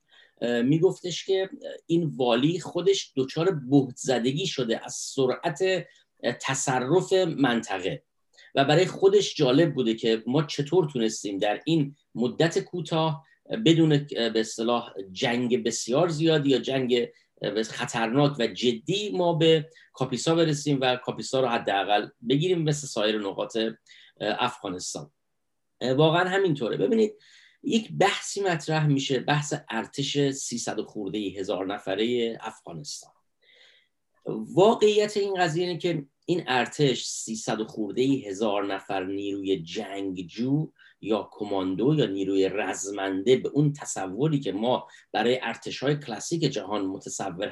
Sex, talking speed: male, 120 wpm